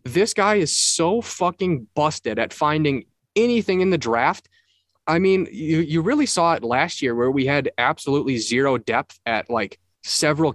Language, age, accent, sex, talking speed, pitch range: English, 20-39, American, male, 170 wpm, 120-170 Hz